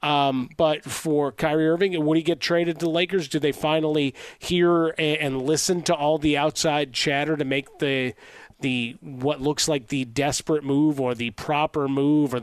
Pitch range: 140-165 Hz